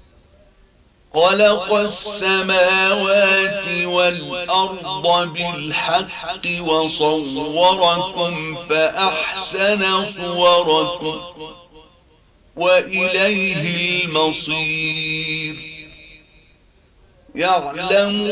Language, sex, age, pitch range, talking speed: Arabic, male, 50-69, 155-190 Hz, 35 wpm